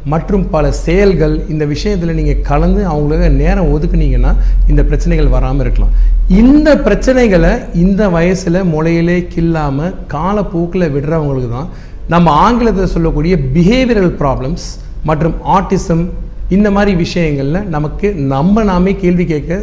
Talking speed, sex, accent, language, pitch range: 115 wpm, male, native, Tamil, 145-190 Hz